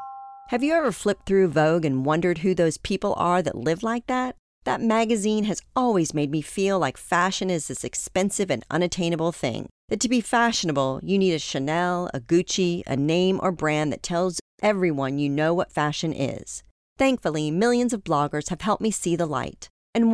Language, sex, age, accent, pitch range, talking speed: English, female, 40-59, American, 150-205 Hz, 190 wpm